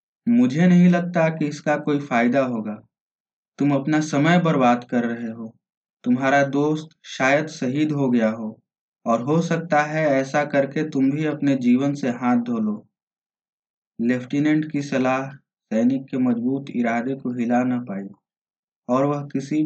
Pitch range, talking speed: 130-155 Hz, 155 wpm